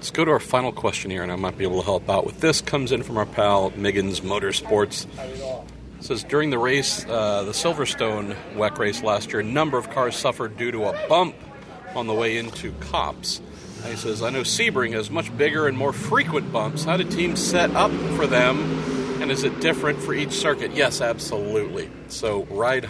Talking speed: 205 wpm